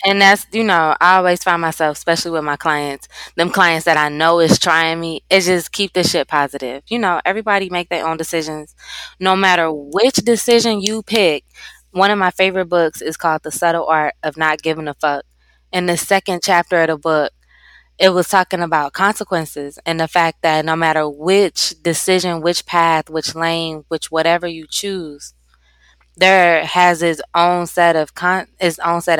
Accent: American